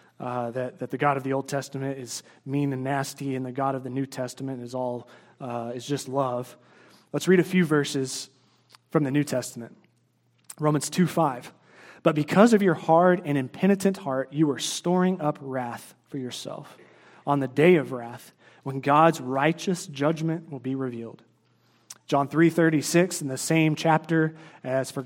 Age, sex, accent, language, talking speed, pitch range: 30-49, male, American, English, 175 wpm, 130-160 Hz